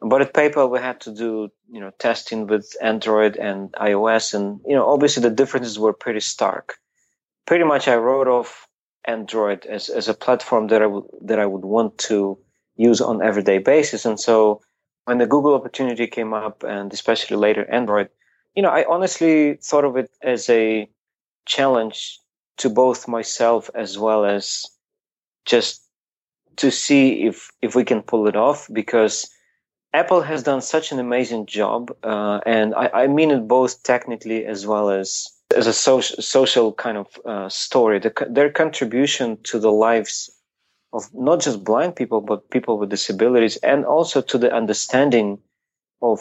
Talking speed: 170 wpm